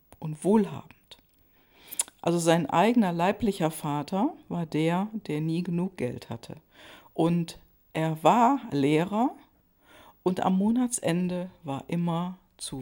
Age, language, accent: 50-69, German, German